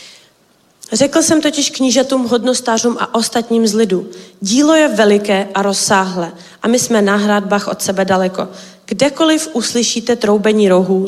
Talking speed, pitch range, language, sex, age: 140 wpm, 200-245 Hz, Czech, female, 20-39